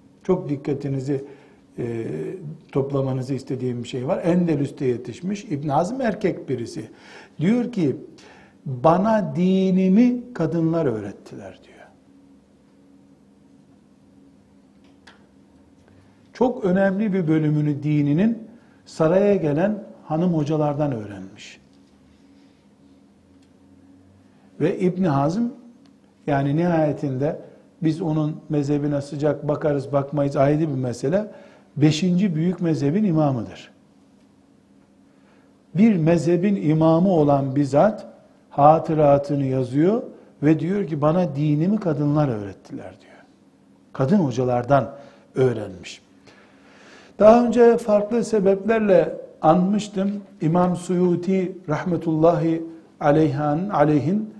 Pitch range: 135-185 Hz